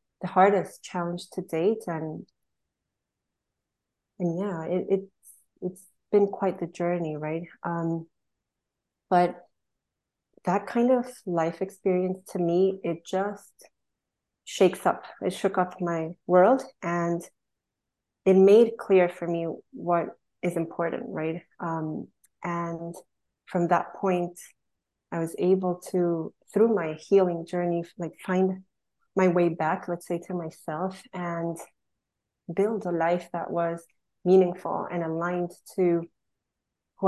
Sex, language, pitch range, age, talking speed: female, English, 170-190 Hz, 30-49, 125 wpm